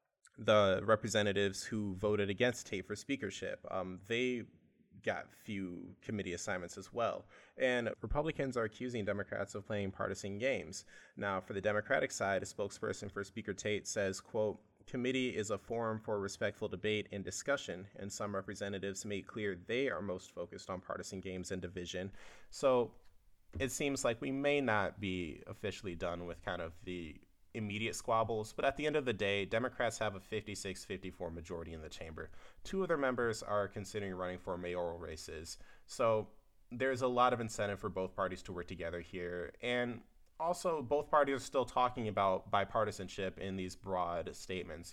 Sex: male